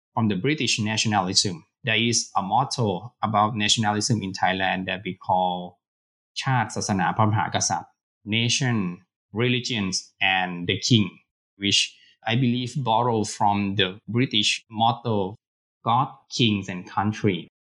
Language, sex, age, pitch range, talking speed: English, male, 20-39, 100-120 Hz, 120 wpm